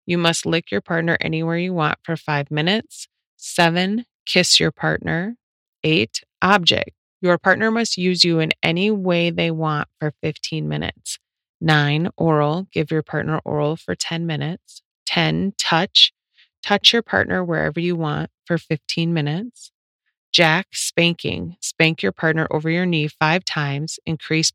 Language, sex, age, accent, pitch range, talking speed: English, female, 30-49, American, 155-180 Hz, 150 wpm